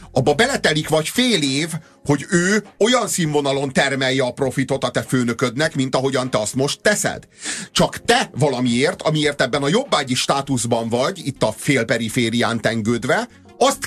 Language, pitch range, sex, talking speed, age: Hungarian, 120-190 Hz, male, 150 wpm, 30-49